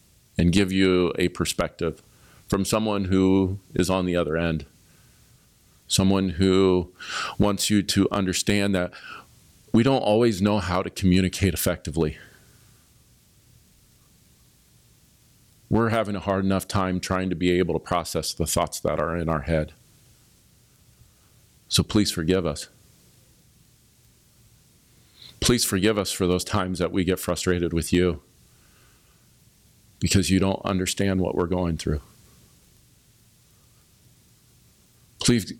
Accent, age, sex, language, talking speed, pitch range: American, 40-59, male, English, 120 wpm, 90-110 Hz